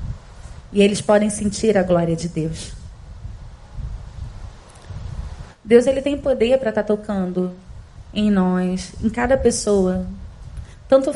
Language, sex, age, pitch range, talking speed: Portuguese, female, 20-39, 185-235 Hz, 110 wpm